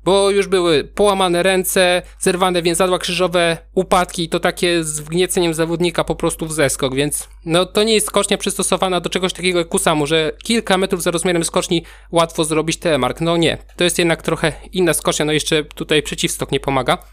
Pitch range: 160-185 Hz